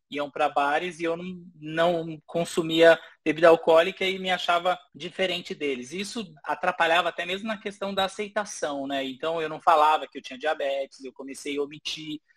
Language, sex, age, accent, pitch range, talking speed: Portuguese, male, 20-39, Brazilian, 155-185 Hz, 175 wpm